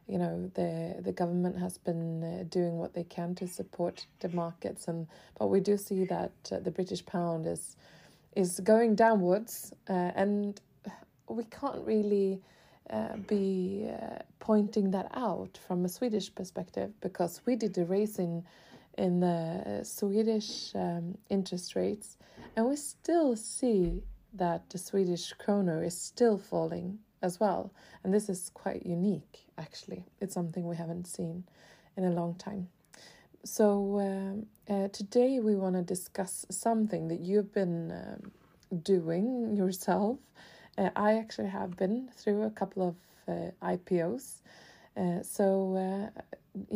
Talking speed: 145 wpm